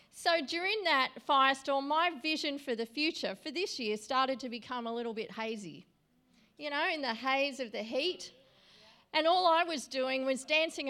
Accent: Australian